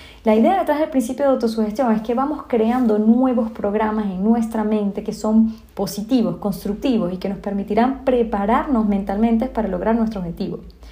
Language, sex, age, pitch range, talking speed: Spanish, female, 20-39, 200-245 Hz, 165 wpm